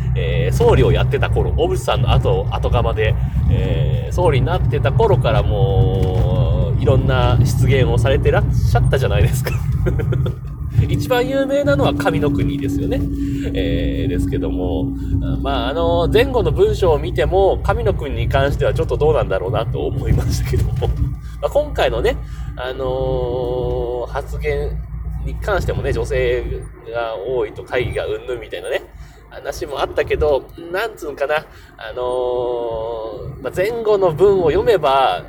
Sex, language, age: male, Japanese, 30-49